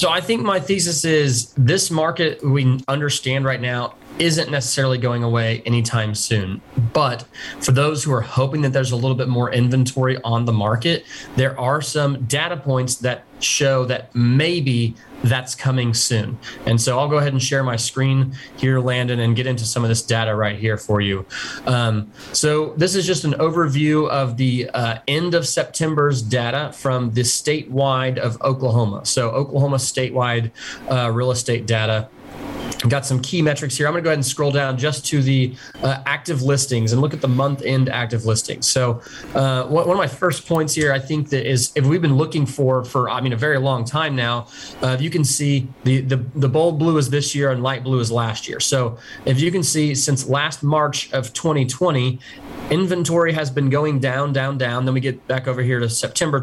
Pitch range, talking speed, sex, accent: 125-145 Hz, 200 wpm, male, American